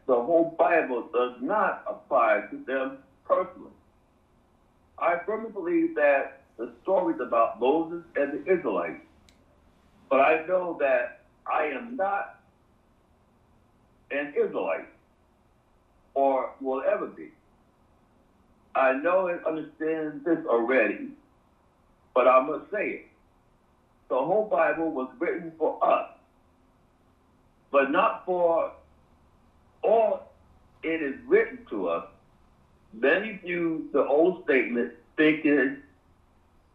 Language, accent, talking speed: English, American, 110 wpm